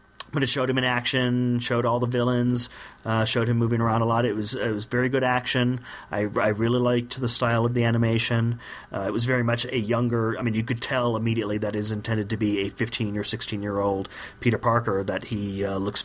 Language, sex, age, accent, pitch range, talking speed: English, male, 30-49, American, 105-125 Hz, 240 wpm